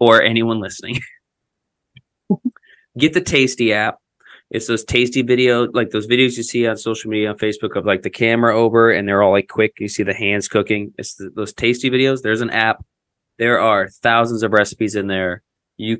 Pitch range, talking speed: 105-120 Hz, 195 wpm